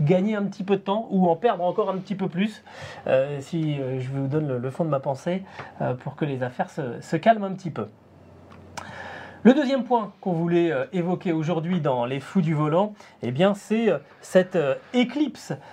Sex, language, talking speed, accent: male, French, 215 wpm, French